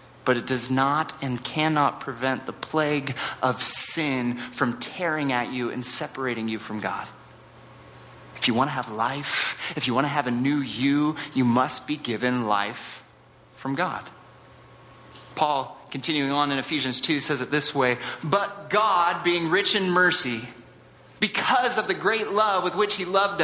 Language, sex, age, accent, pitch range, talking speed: English, male, 30-49, American, 120-165 Hz, 170 wpm